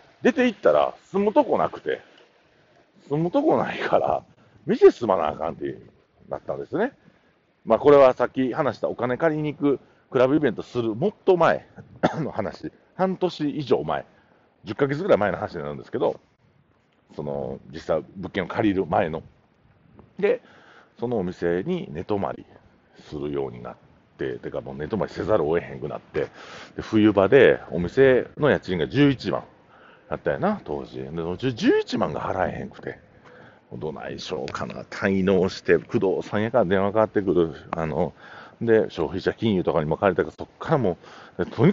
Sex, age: male, 50-69